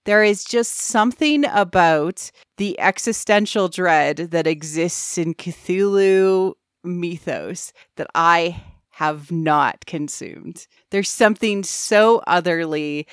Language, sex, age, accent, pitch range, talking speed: English, female, 30-49, American, 160-200 Hz, 100 wpm